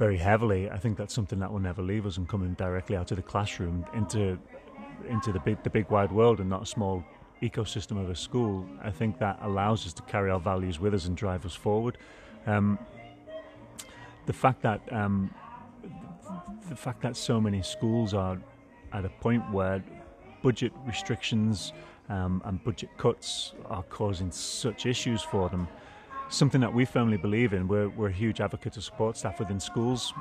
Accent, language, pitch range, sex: British, English, 95-115 Hz, male